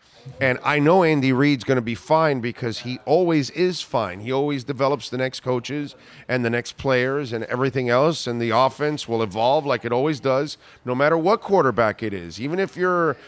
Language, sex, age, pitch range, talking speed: English, male, 40-59, 125-150 Hz, 205 wpm